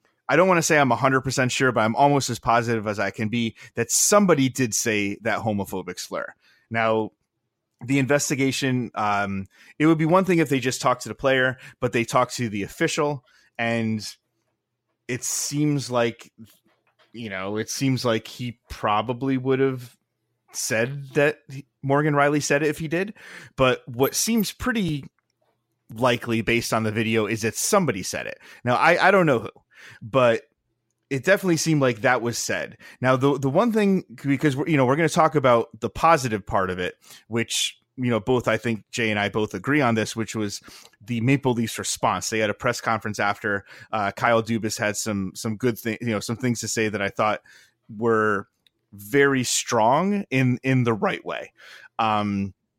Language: English